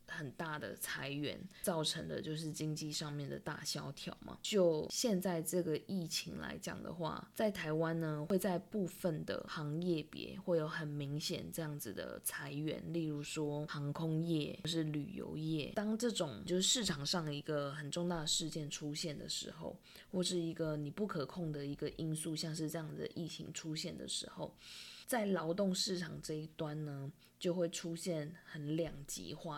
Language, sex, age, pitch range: Chinese, female, 20-39, 150-180 Hz